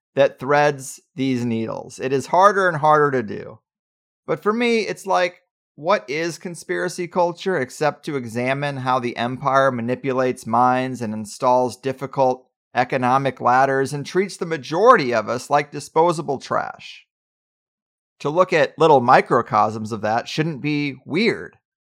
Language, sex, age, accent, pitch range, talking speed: English, male, 30-49, American, 125-165 Hz, 145 wpm